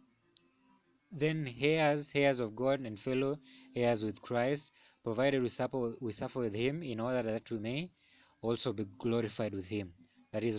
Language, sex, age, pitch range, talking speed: English, male, 20-39, 110-135 Hz, 165 wpm